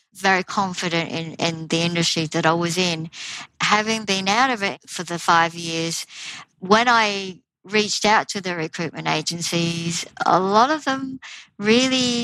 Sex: male